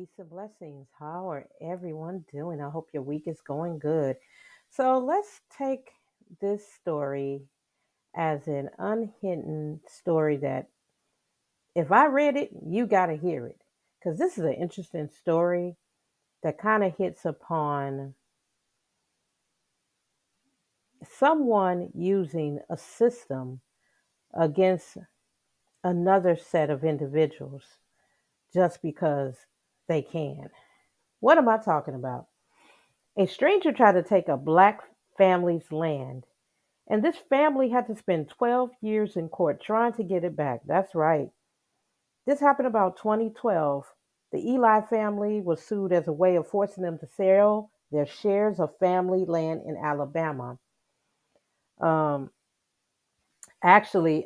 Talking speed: 125 wpm